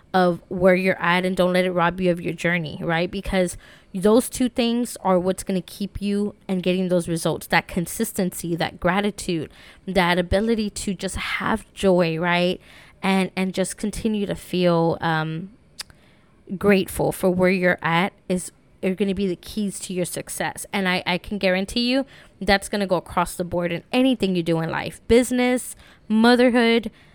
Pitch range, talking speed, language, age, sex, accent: 175-205 Hz, 180 wpm, English, 20-39, female, American